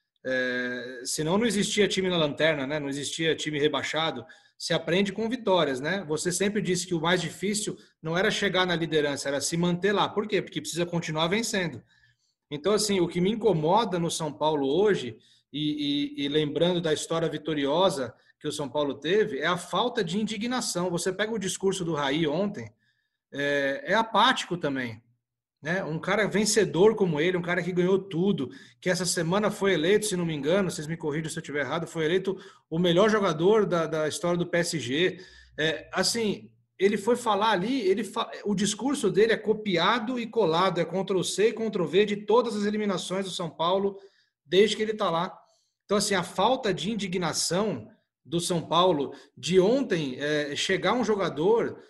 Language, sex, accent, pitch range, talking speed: Portuguese, male, Brazilian, 155-205 Hz, 190 wpm